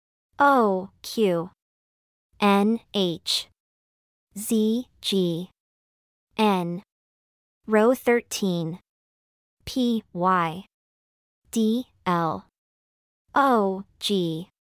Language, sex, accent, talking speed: English, male, American, 60 wpm